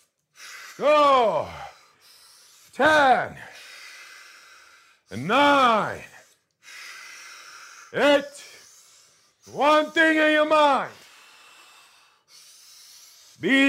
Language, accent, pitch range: English, American, 260-315 Hz